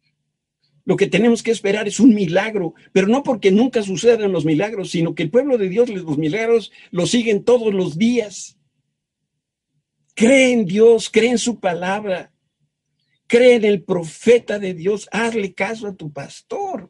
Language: Spanish